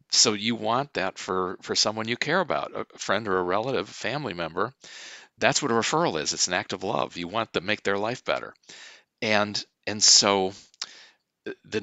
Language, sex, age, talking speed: English, male, 50-69, 195 wpm